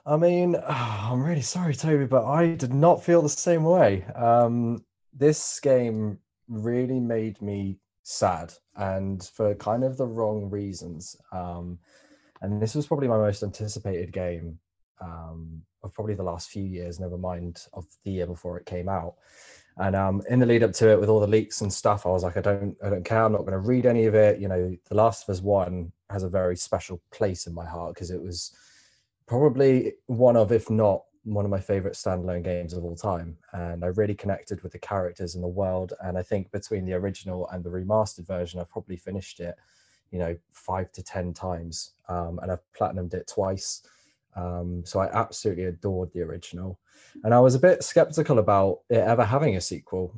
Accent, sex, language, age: British, male, English, 20-39